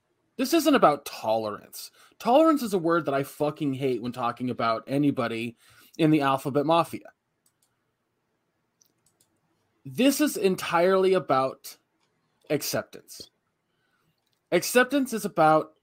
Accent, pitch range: American, 140-200 Hz